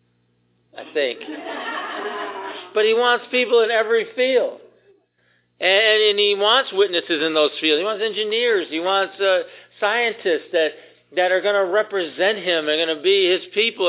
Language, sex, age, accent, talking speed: English, male, 50-69, American, 160 wpm